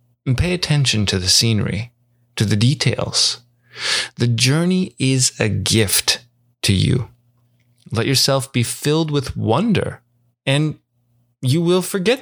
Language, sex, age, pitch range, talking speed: English, male, 30-49, 115-125 Hz, 130 wpm